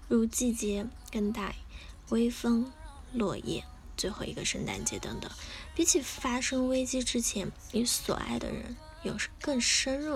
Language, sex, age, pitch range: Chinese, female, 10-29, 210-255 Hz